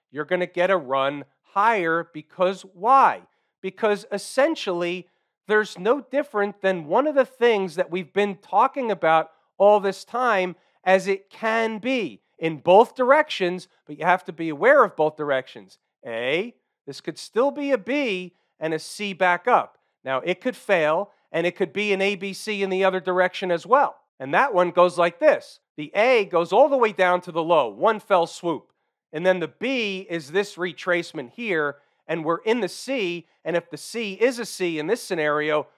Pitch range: 165-205 Hz